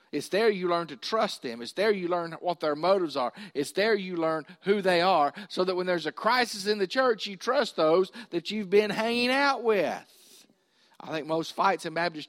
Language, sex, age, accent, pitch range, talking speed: English, male, 50-69, American, 160-205 Hz, 225 wpm